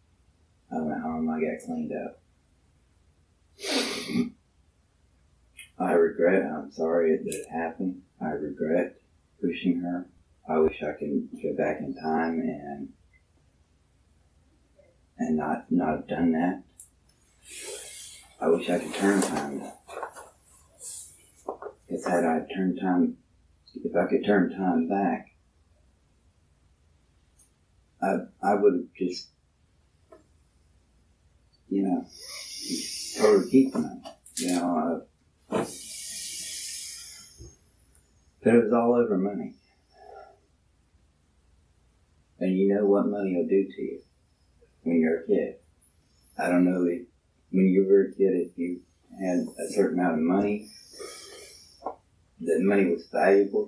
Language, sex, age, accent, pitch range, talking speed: English, male, 30-49, American, 80-90 Hz, 115 wpm